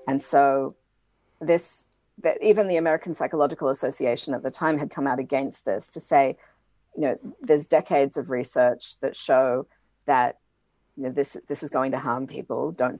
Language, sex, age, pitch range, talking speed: English, female, 40-59, 135-160 Hz, 175 wpm